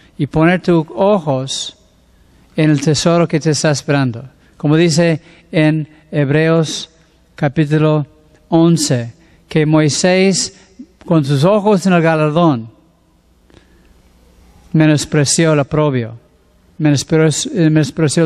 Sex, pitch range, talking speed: male, 150-190 Hz, 95 wpm